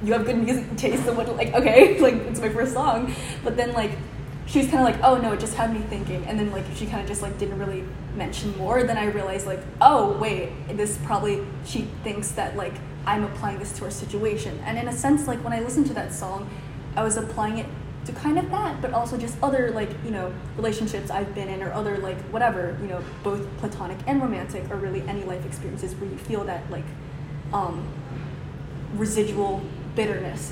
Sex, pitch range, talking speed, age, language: female, 150-230 Hz, 220 wpm, 10-29, English